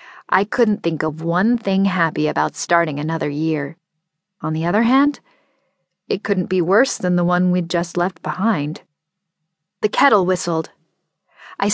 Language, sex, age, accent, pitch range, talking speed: English, female, 40-59, American, 170-210 Hz, 155 wpm